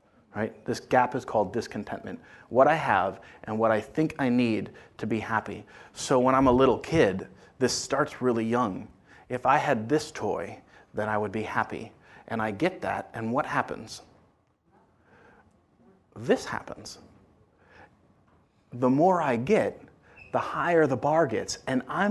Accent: American